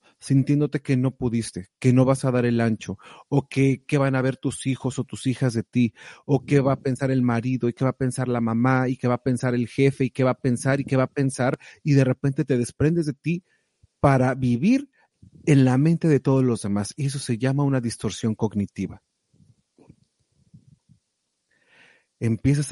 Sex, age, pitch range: male, 40-59, 120-145 Hz